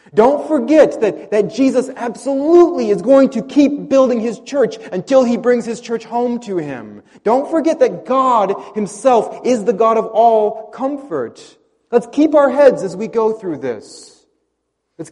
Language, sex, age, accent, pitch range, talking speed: English, male, 30-49, American, 170-240 Hz, 165 wpm